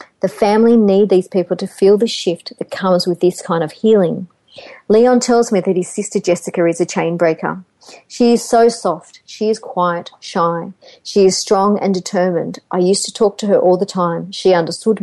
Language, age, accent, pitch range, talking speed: English, 40-59, Australian, 175-205 Hz, 205 wpm